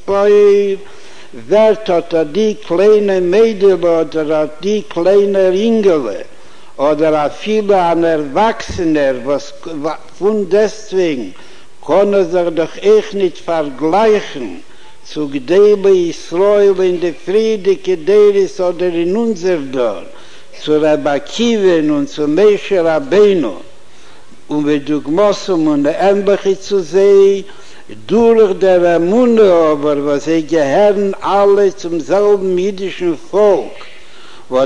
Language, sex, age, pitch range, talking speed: Hebrew, male, 60-79, 170-210 Hz, 75 wpm